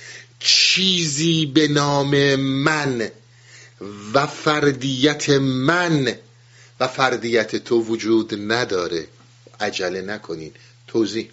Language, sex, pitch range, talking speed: Persian, male, 120-175 Hz, 80 wpm